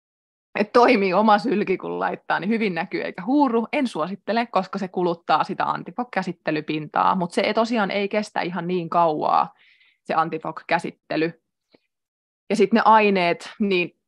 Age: 20-39